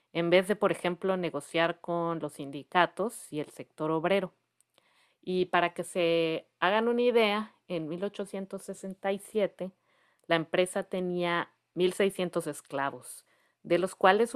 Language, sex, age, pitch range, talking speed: English, female, 40-59, 155-200 Hz, 125 wpm